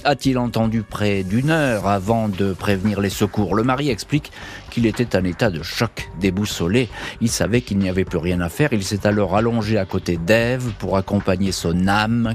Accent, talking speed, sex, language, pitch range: French, 195 wpm, male, French, 95-125 Hz